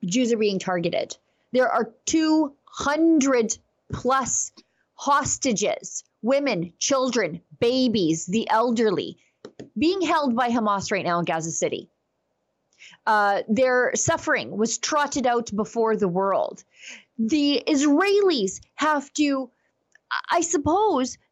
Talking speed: 105 wpm